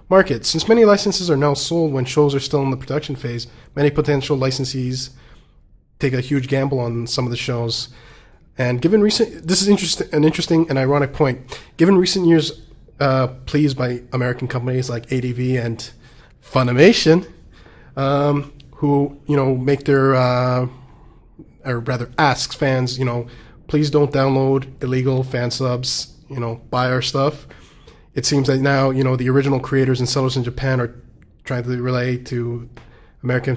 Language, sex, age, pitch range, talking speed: English, male, 20-39, 125-140 Hz, 165 wpm